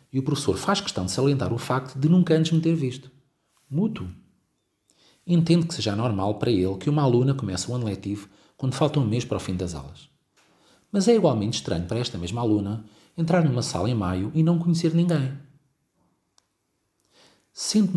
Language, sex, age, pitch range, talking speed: Portuguese, male, 40-59, 105-150 Hz, 185 wpm